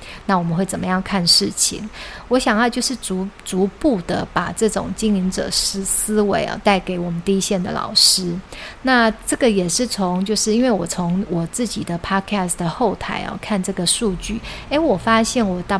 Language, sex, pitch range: Chinese, female, 185-215 Hz